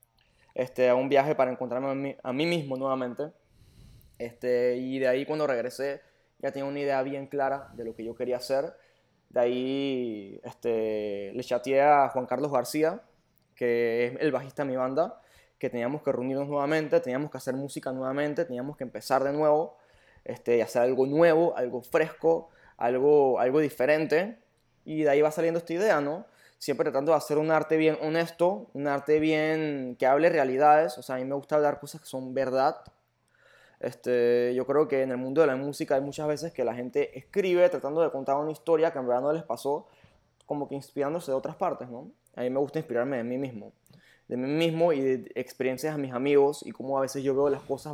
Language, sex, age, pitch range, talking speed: Spanish, male, 20-39, 125-150 Hz, 205 wpm